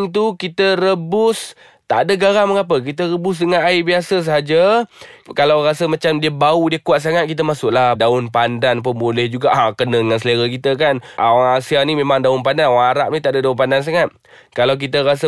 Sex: male